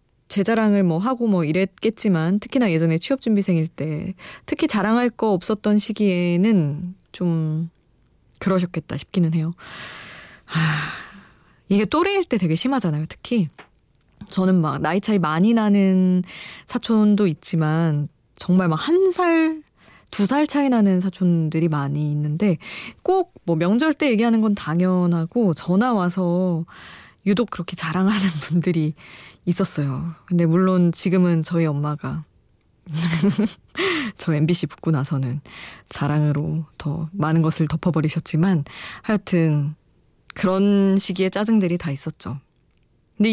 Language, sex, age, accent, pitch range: Korean, female, 20-39, native, 160-215 Hz